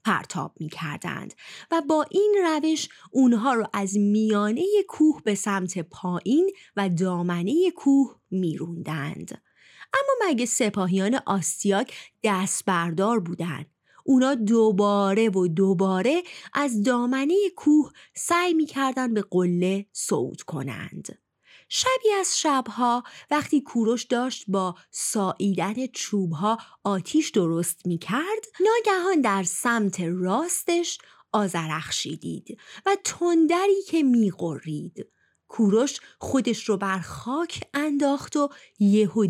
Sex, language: female, Persian